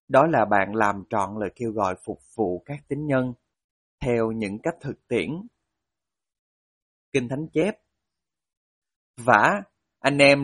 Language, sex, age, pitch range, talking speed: Vietnamese, male, 20-39, 105-140 Hz, 140 wpm